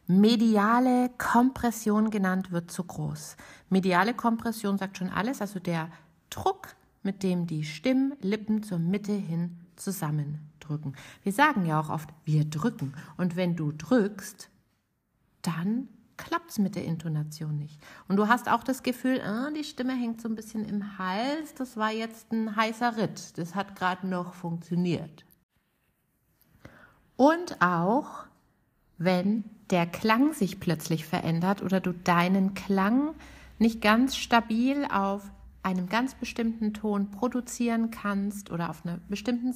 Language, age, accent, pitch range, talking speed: German, 50-69, German, 180-235 Hz, 140 wpm